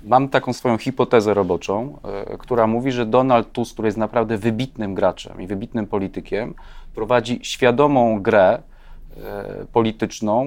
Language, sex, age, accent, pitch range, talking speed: Polish, male, 30-49, native, 110-130 Hz, 140 wpm